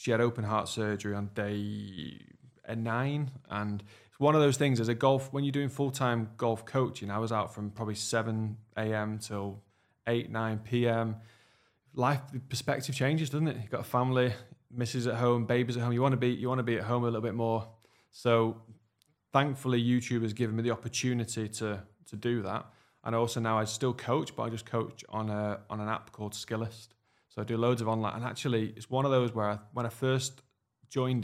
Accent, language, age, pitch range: British, English, 20-39, 110-130 Hz